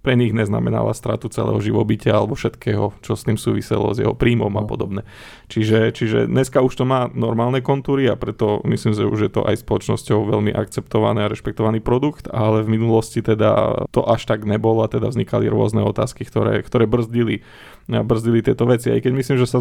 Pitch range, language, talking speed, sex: 110-120 Hz, Slovak, 195 wpm, male